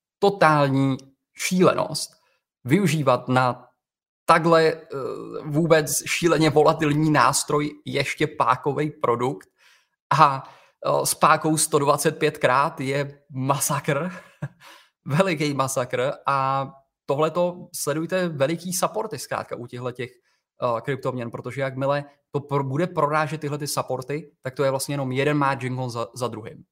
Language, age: Czech, 20-39